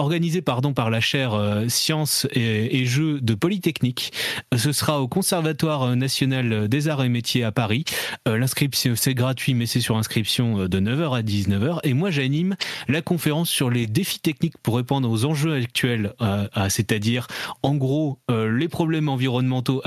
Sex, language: male, French